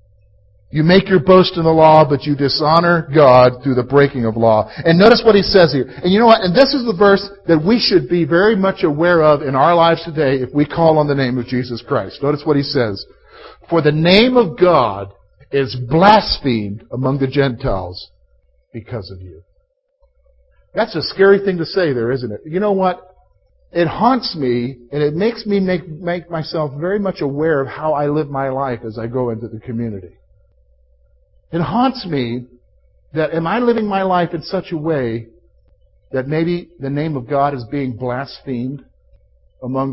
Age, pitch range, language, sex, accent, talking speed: 50-69, 120-190 Hz, English, male, American, 195 wpm